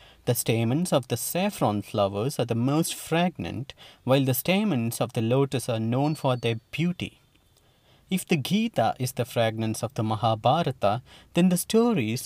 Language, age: English, 30-49